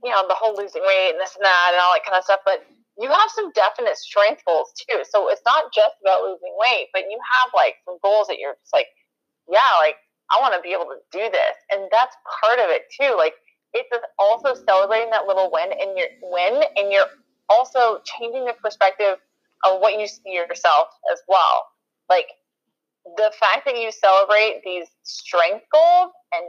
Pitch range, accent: 190-300 Hz, American